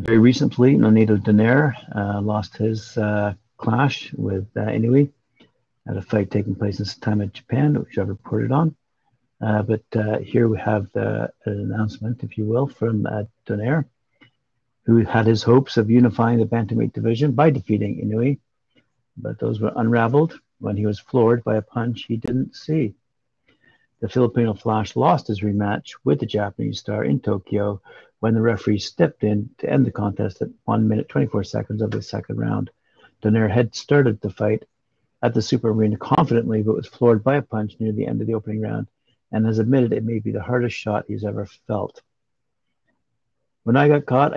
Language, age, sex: English, 60-79, male